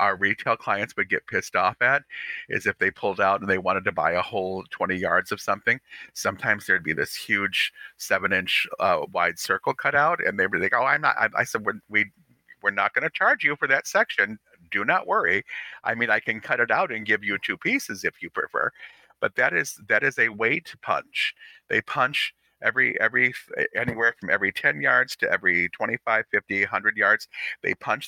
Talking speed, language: 215 wpm, English